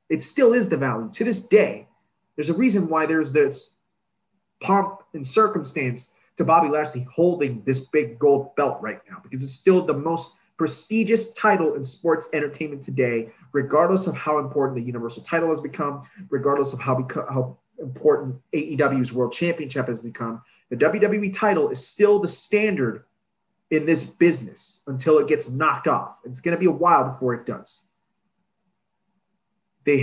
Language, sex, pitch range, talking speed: English, male, 130-195 Hz, 165 wpm